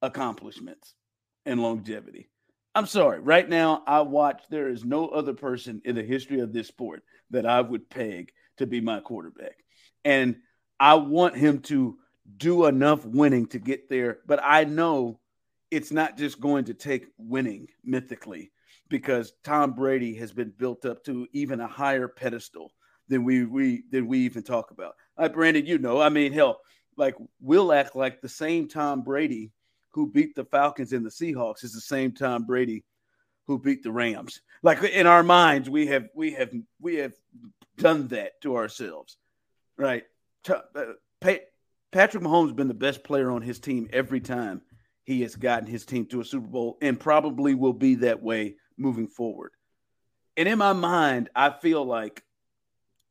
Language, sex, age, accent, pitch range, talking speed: English, male, 50-69, American, 120-150 Hz, 175 wpm